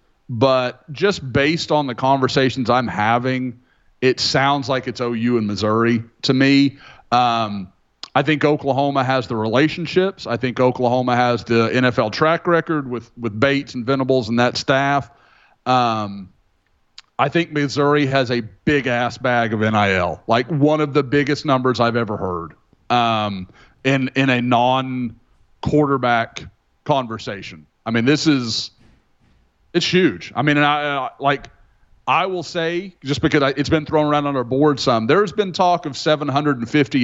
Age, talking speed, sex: 40-59, 155 wpm, male